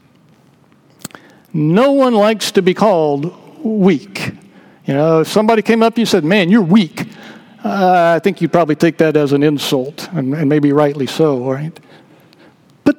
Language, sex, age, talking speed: English, male, 60-79, 165 wpm